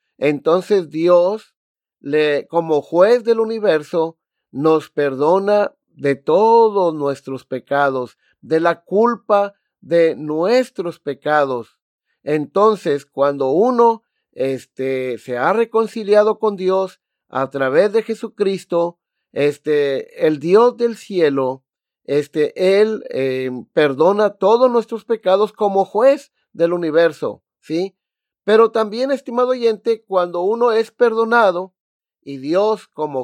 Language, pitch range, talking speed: Spanish, 155-220 Hz, 110 wpm